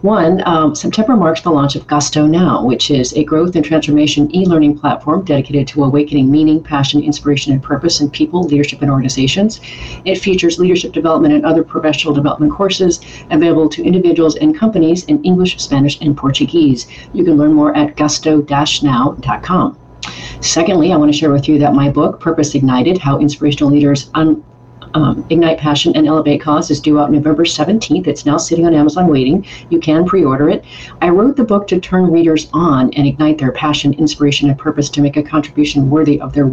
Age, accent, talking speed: 40-59, American, 190 wpm